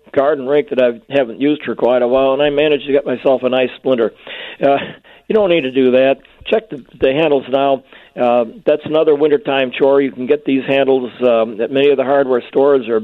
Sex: male